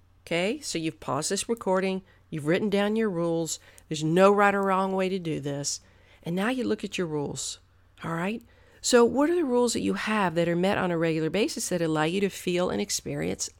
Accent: American